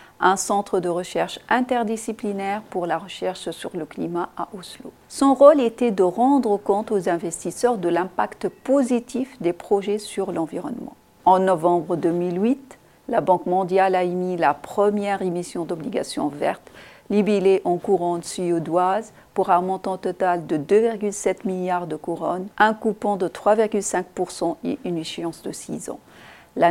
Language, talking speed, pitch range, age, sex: French, 145 wpm, 175-210 Hz, 40-59, female